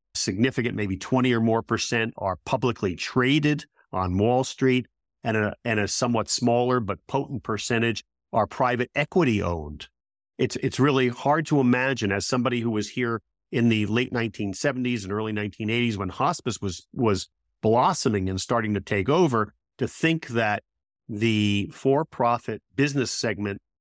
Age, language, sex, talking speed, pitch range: 50-69, English, male, 150 wpm, 100-130 Hz